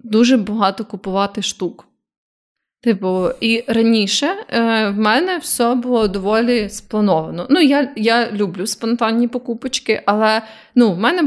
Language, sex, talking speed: Ukrainian, female, 120 wpm